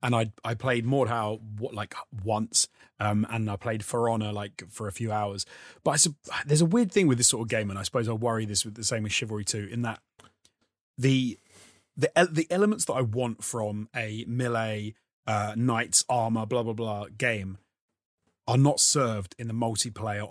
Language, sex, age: English, male, 30-49